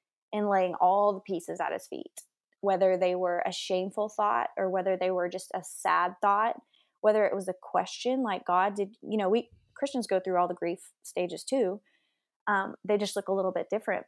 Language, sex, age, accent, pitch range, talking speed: English, female, 20-39, American, 190-220 Hz, 210 wpm